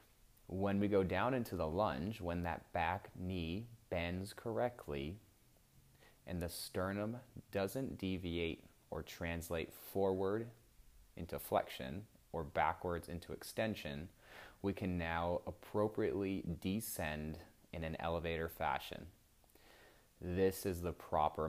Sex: male